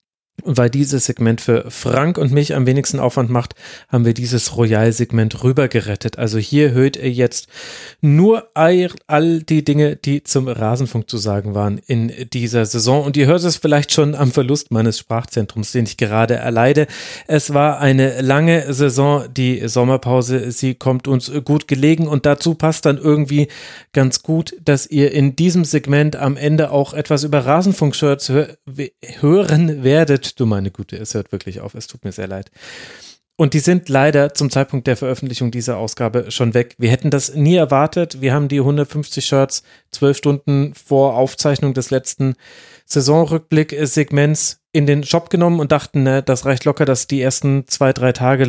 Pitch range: 125-145 Hz